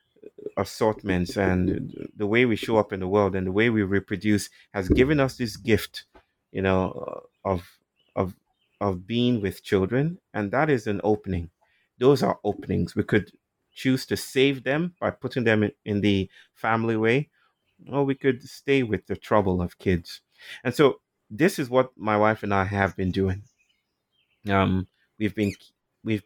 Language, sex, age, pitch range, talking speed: English, male, 30-49, 95-115 Hz, 170 wpm